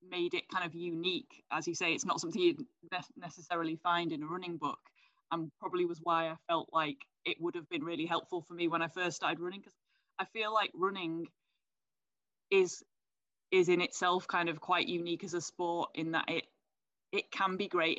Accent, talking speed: British, 205 wpm